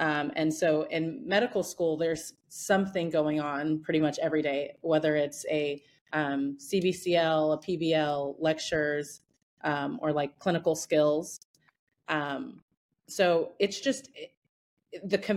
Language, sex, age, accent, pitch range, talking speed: English, female, 30-49, American, 150-180 Hz, 125 wpm